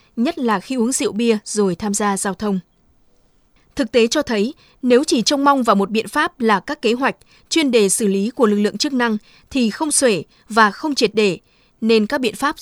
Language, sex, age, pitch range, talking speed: Vietnamese, female, 20-39, 210-260 Hz, 225 wpm